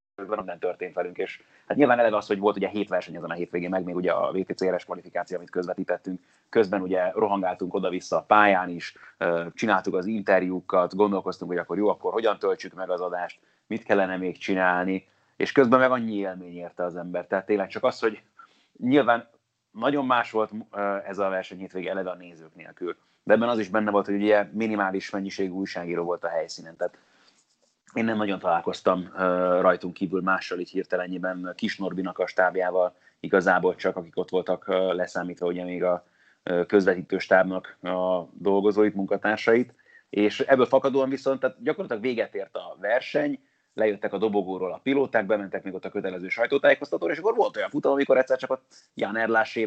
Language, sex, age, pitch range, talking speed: Hungarian, male, 30-49, 90-110 Hz, 175 wpm